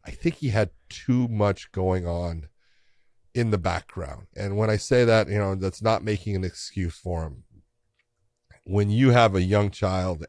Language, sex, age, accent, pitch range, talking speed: English, male, 40-59, American, 95-120 Hz, 180 wpm